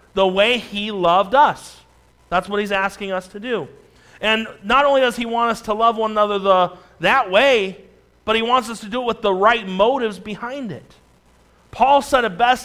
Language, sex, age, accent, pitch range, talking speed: English, male, 40-59, American, 180-225 Hz, 205 wpm